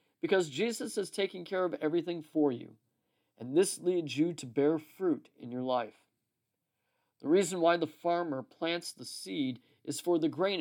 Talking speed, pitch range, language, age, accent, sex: 175 wpm, 145-195 Hz, English, 50-69, American, male